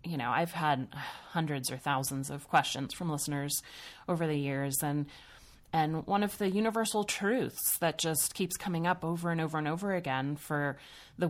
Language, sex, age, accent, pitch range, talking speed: English, female, 30-49, American, 145-170 Hz, 180 wpm